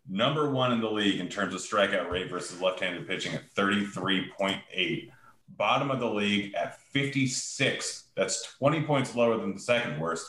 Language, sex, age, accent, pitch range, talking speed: English, male, 30-49, American, 90-115 Hz, 170 wpm